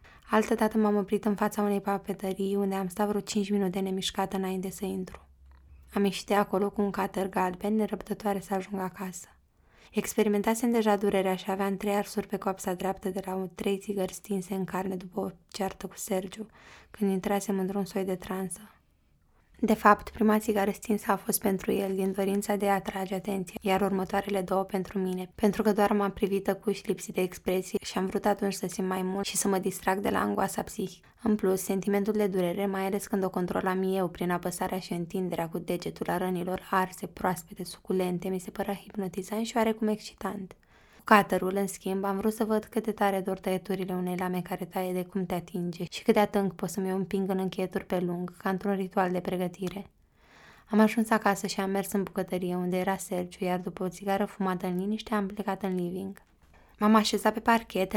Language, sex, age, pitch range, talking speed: Romanian, female, 20-39, 185-205 Hz, 205 wpm